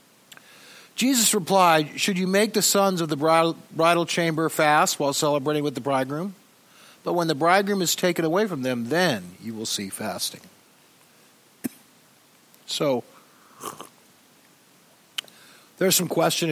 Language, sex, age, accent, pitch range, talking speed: English, male, 60-79, American, 150-210 Hz, 125 wpm